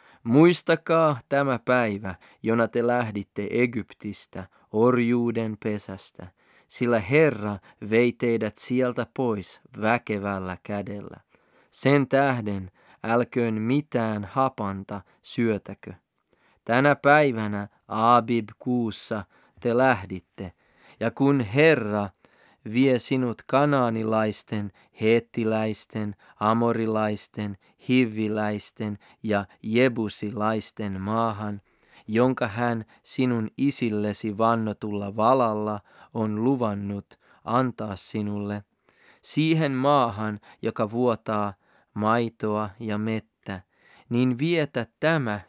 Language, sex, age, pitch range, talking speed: Finnish, male, 30-49, 105-125 Hz, 80 wpm